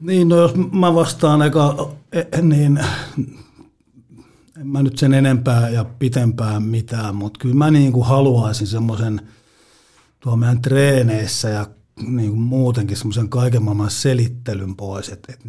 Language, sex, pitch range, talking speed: Finnish, male, 105-125 Hz, 130 wpm